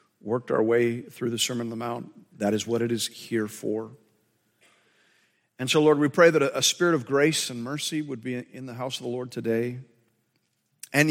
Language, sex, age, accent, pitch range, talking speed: English, male, 50-69, American, 115-150 Hz, 205 wpm